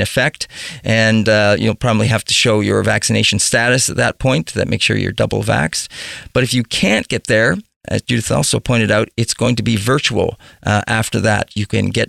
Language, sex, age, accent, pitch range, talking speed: English, male, 40-59, American, 110-135 Hz, 210 wpm